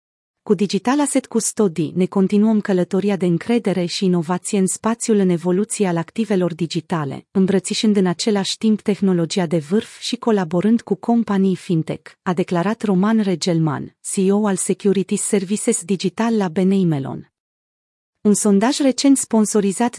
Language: Romanian